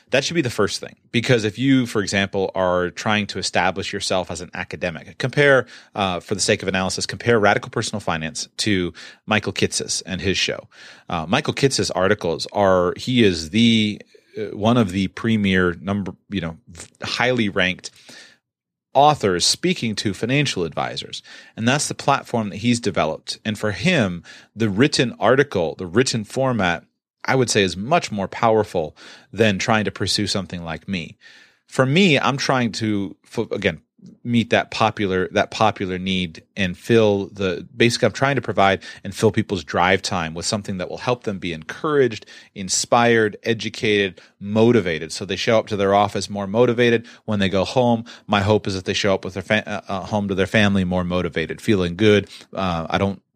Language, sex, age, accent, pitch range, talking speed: English, male, 30-49, American, 95-115 Hz, 190 wpm